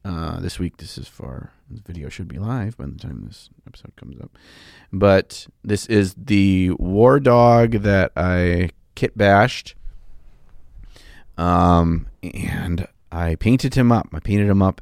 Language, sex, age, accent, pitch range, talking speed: English, male, 30-49, American, 90-135 Hz, 150 wpm